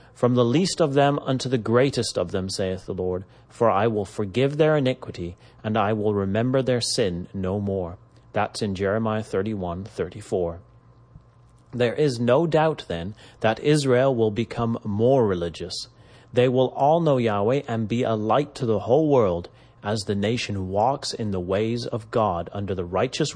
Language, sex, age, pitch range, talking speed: English, male, 30-49, 105-130 Hz, 170 wpm